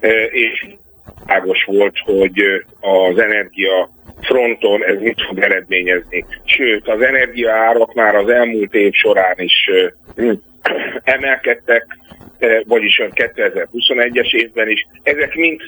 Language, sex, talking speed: Hungarian, male, 105 wpm